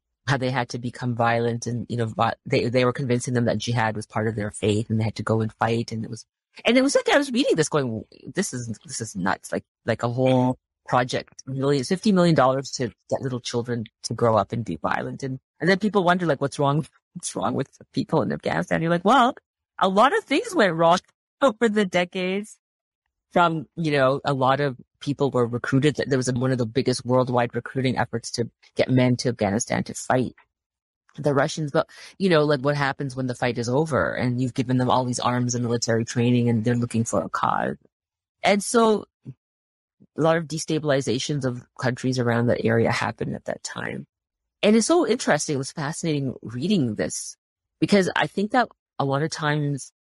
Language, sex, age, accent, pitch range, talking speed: English, female, 30-49, American, 120-155 Hz, 210 wpm